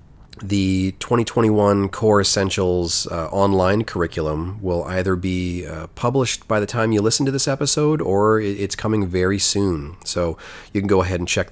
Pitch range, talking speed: 85-105 Hz, 165 wpm